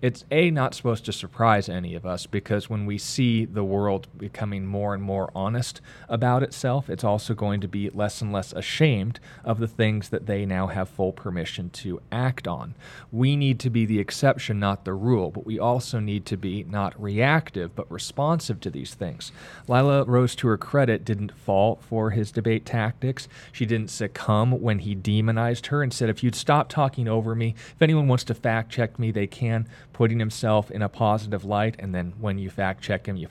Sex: male